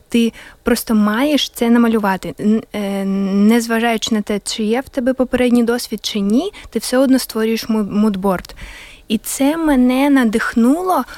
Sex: female